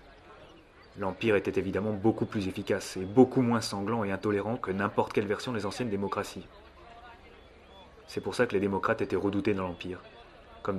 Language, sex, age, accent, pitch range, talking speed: French, male, 20-39, French, 100-120 Hz, 165 wpm